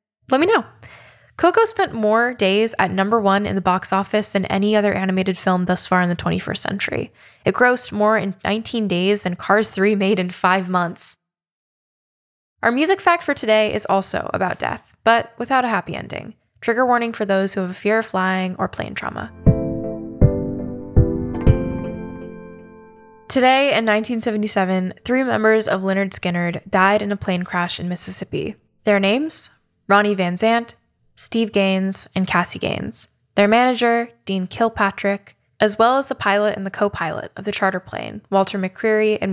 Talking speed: 165 wpm